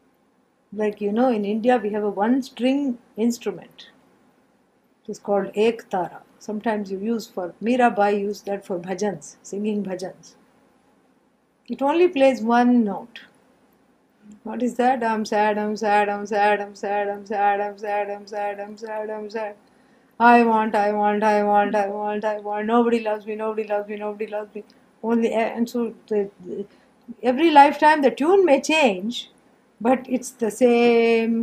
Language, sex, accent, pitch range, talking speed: English, female, Indian, 210-275 Hz, 165 wpm